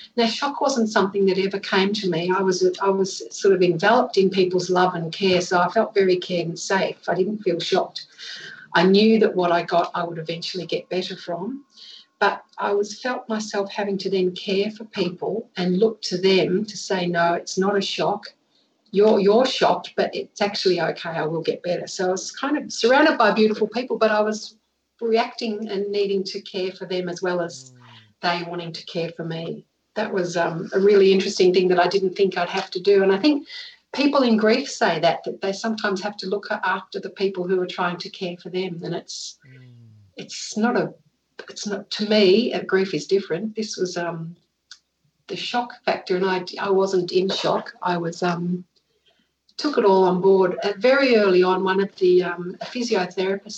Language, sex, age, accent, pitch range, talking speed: English, female, 50-69, Australian, 180-215 Hz, 205 wpm